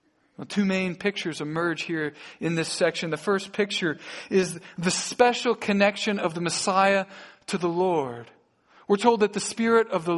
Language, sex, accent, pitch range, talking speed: English, male, American, 175-225 Hz, 165 wpm